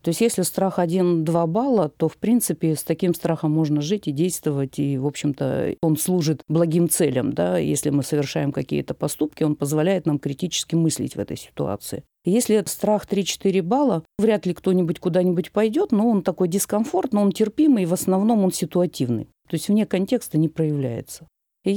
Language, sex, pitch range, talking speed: Russian, female, 150-195 Hz, 175 wpm